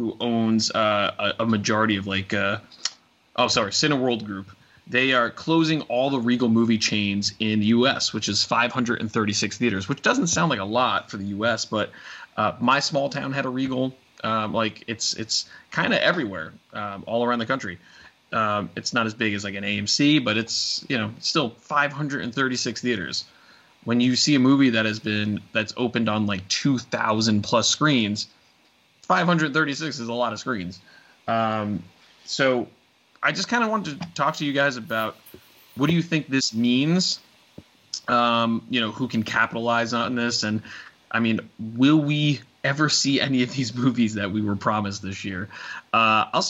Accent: American